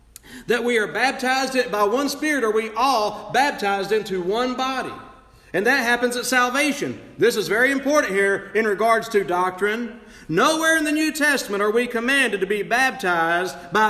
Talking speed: 175 wpm